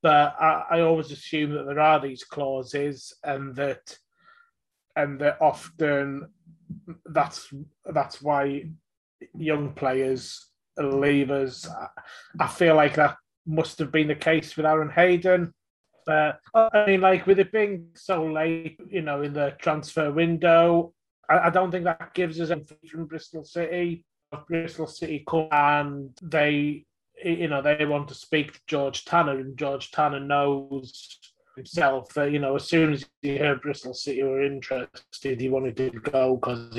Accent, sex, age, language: British, male, 30-49, English